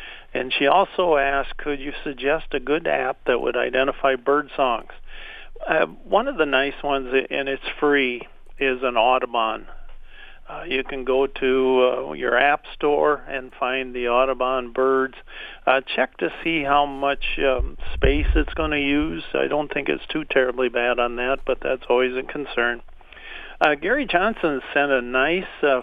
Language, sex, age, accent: English, male, 50-69, American